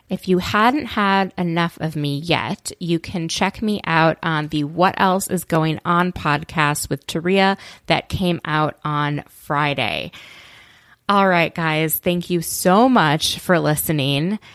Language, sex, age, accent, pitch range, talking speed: English, female, 20-39, American, 150-180 Hz, 155 wpm